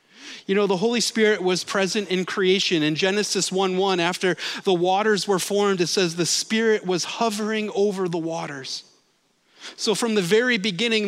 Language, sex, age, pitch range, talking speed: English, male, 30-49, 190-225 Hz, 170 wpm